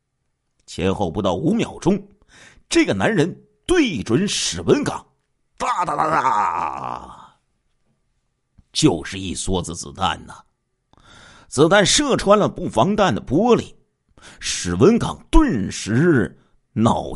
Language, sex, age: Chinese, male, 50-69